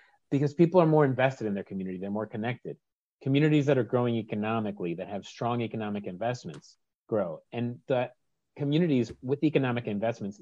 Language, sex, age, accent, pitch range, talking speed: English, male, 30-49, American, 110-135 Hz, 160 wpm